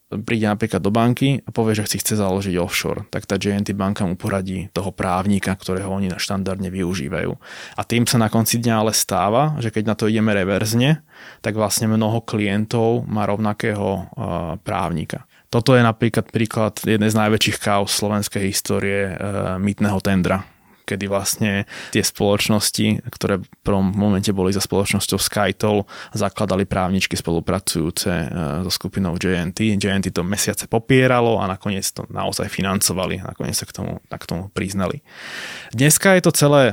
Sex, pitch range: male, 95-115 Hz